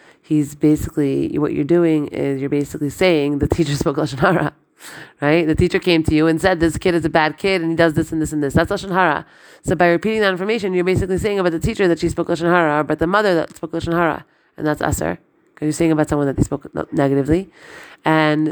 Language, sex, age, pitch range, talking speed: English, female, 30-49, 150-175 Hz, 240 wpm